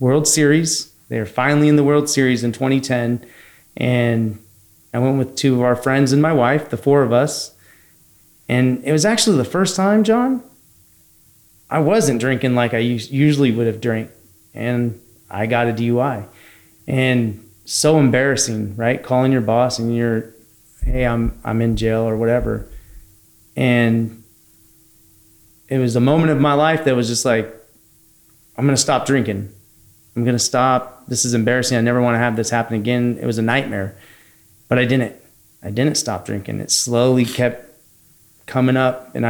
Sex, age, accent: male, 30-49, American